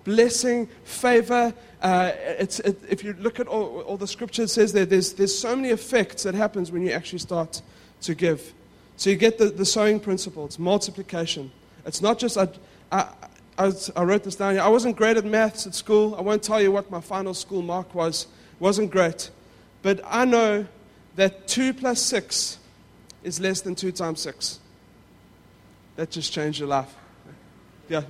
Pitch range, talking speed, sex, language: 175-230 Hz, 180 wpm, male, English